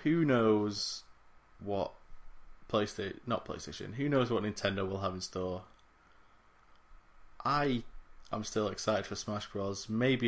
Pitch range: 100-125 Hz